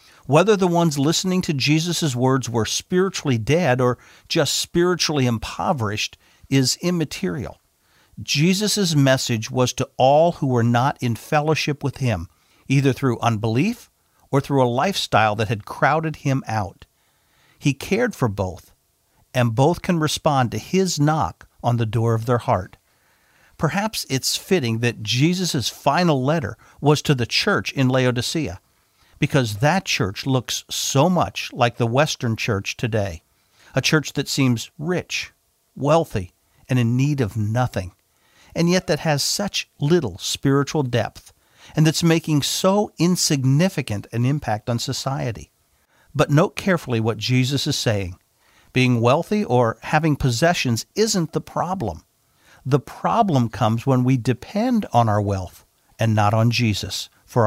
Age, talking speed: 50-69, 145 wpm